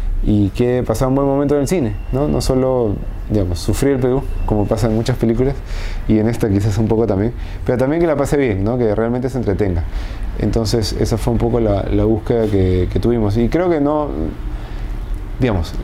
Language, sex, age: Spanish, male, 20-39